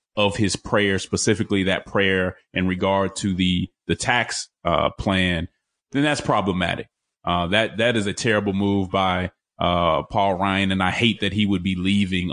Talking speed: 175 wpm